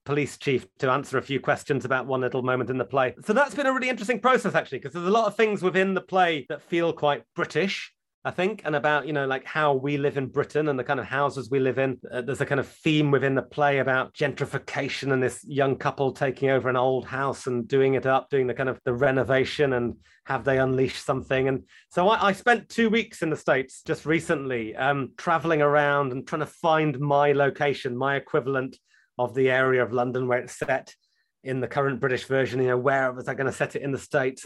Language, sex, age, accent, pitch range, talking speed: English, male, 30-49, British, 130-165 Hz, 240 wpm